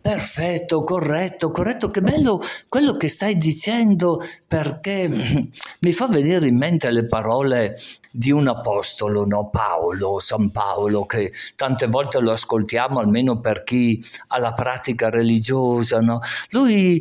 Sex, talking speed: male, 135 wpm